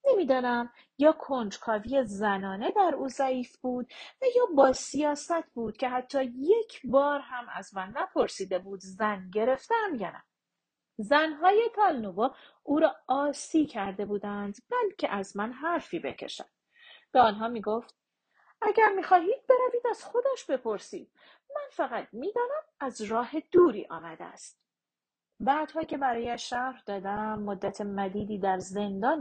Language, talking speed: Persian, 130 wpm